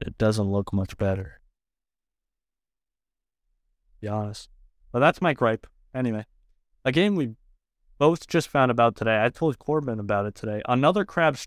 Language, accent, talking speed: English, American, 150 wpm